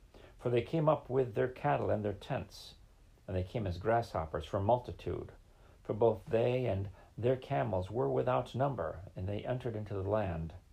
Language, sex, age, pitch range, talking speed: English, male, 50-69, 100-125 Hz, 180 wpm